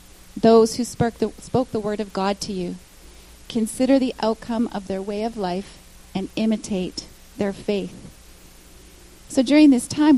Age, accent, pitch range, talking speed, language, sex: 30-49, American, 190-235 Hz, 160 wpm, English, female